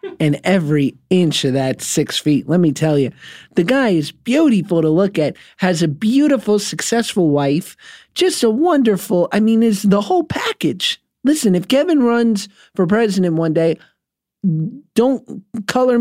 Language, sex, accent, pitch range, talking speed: English, male, American, 155-205 Hz, 155 wpm